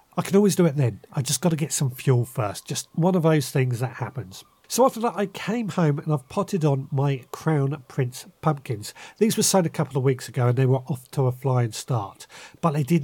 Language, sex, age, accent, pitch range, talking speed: English, male, 40-59, British, 130-170 Hz, 250 wpm